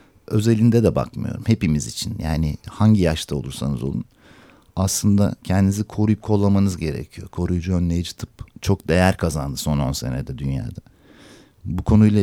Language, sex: Turkish, male